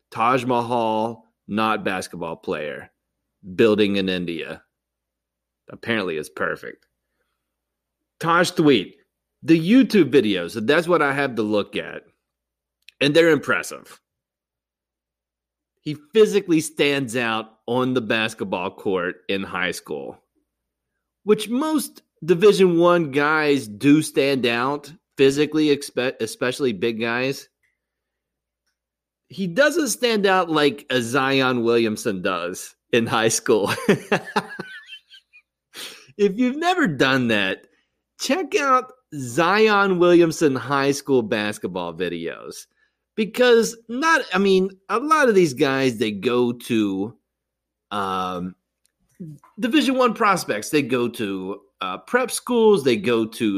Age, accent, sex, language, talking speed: 30-49, American, male, English, 110 wpm